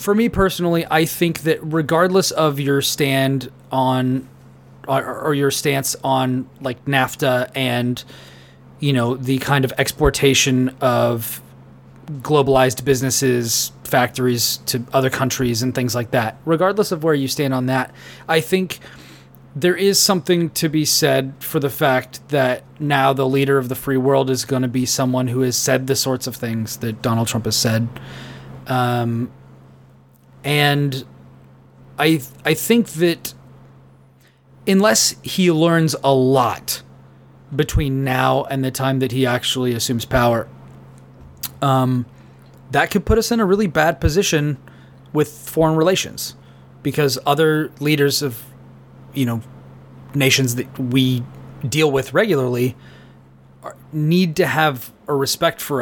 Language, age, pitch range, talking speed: English, 30-49, 120-145 Hz, 140 wpm